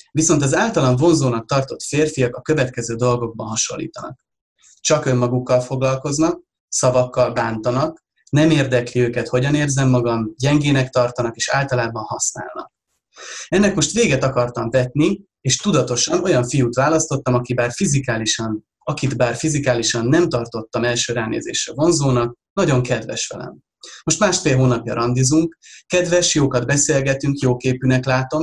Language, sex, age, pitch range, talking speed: Hungarian, male, 30-49, 120-155 Hz, 125 wpm